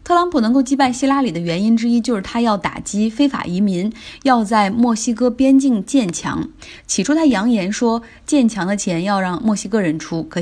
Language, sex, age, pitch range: Chinese, female, 20-39, 180-250 Hz